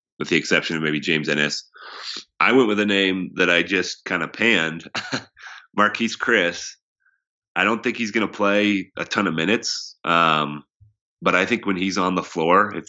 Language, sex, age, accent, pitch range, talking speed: English, male, 30-49, American, 80-100 Hz, 190 wpm